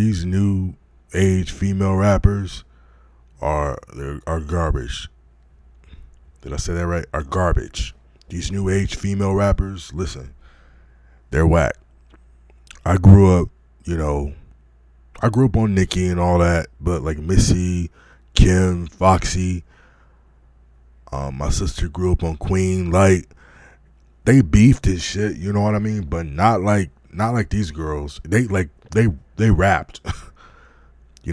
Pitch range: 70-95 Hz